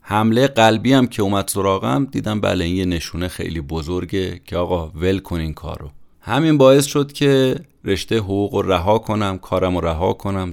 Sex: male